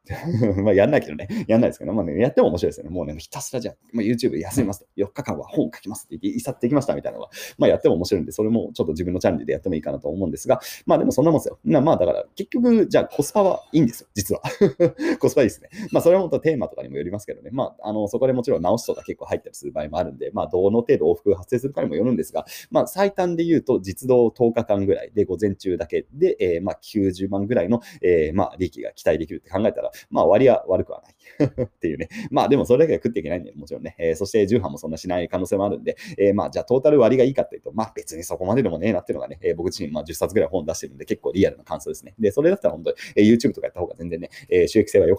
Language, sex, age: Japanese, male, 30-49